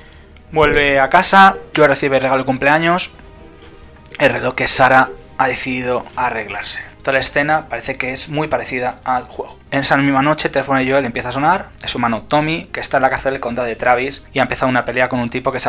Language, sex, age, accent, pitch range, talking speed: Spanish, male, 20-39, Spanish, 80-135 Hz, 220 wpm